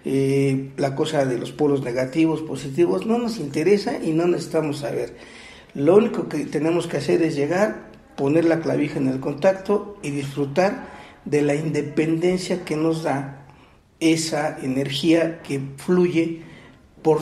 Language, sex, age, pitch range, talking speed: Spanish, male, 50-69, 145-175 Hz, 145 wpm